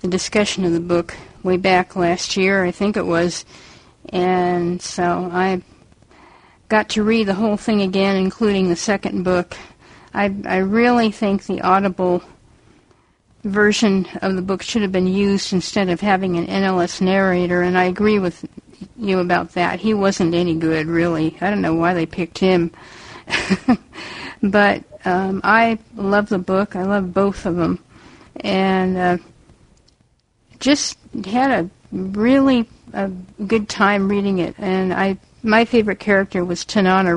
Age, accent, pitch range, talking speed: 50-69, American, 180-210 Hz, 155 wpm